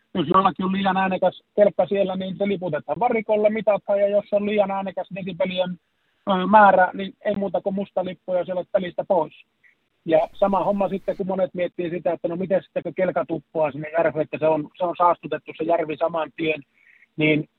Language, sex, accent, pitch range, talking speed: Finnish, male, native, 155-195 Hz, 180 wpm